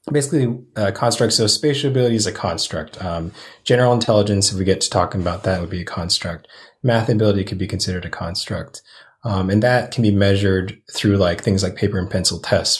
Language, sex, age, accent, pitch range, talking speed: English, male, 30-49, American, 90-110 Hz, 205 wpm